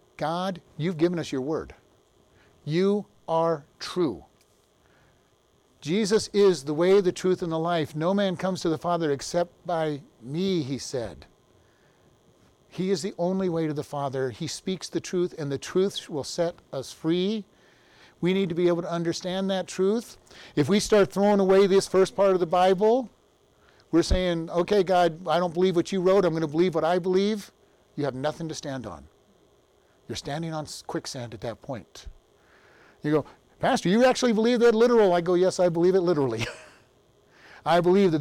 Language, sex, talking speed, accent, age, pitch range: English, male, 180 wpm, American, 50-69, 165-195 Hz